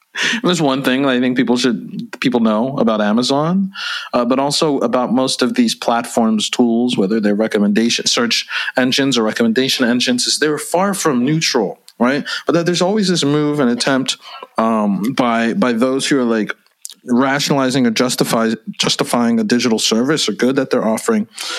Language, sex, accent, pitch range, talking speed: English, male, American, 130-195 Hz, 170 wpm